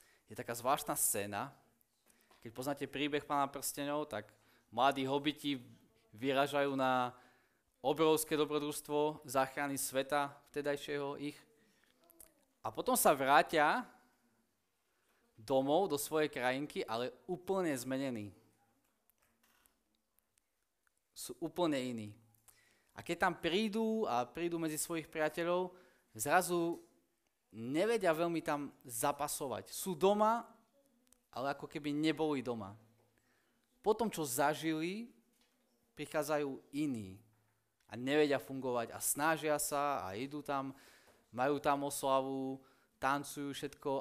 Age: 20-39